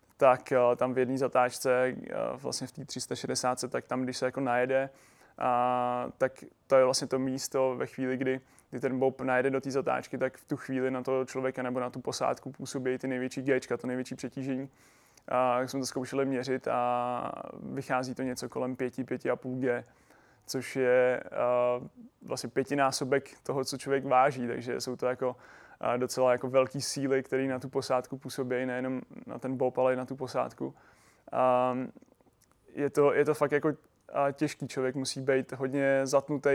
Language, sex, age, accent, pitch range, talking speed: Czech, male, 20-39, native, 125-135 Hz, 175 wpm